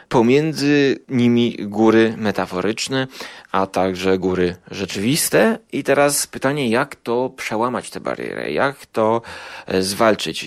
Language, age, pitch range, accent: Polish, 30-49, 95-120 Hz, native